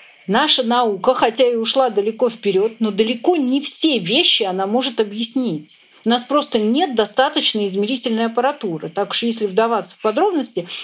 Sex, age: female, 40-59